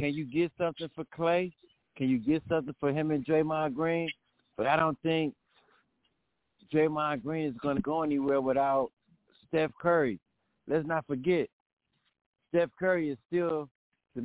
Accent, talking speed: American, 155 wpm